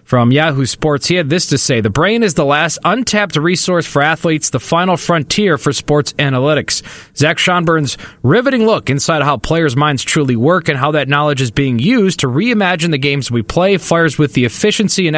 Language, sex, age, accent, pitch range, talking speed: English, male, 20-39, American, 135-180 Hz, 205 wpm